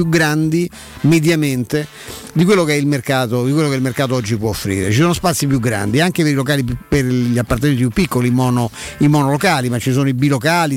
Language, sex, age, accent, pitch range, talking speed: Italian, male, 50-69, native, 125-155 Hz, 205 wpm